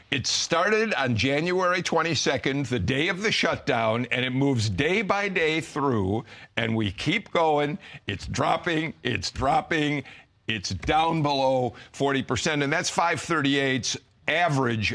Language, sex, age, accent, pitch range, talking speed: English, male, 50-69, American, 105-145 Hz, 145 wpm